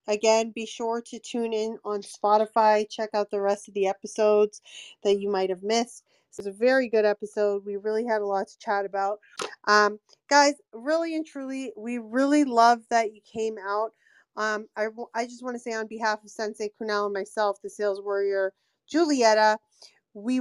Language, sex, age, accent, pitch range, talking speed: English, female, 30-49, American, 205-250 Hz, 195 wpm